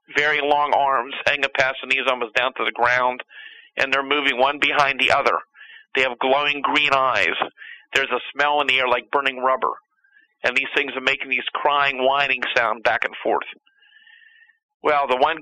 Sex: male